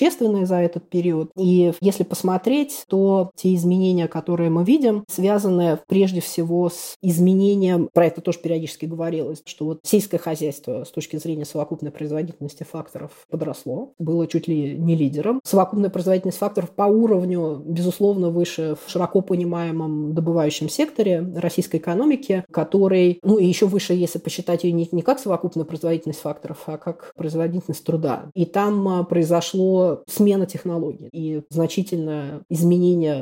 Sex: female